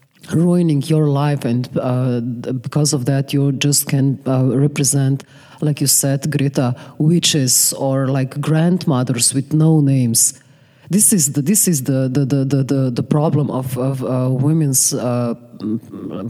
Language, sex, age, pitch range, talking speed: German, female, 30-49, 130-160 Hz, 145 wpm